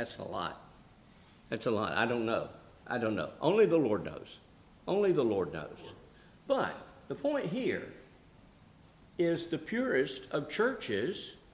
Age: 60-79